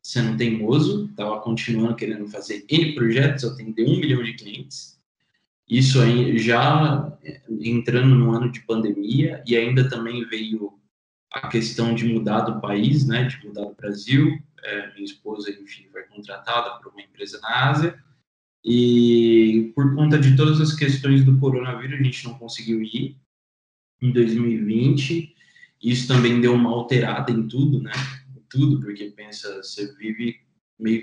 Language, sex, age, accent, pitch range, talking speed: Portuguese, male, 20-39, Brazilian, 115-140 Hz, 145 wpm